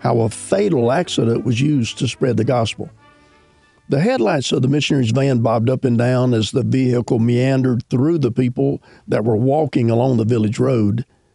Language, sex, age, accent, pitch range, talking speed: English, male, 50-69, American, 120-145 Hz, 180 wpm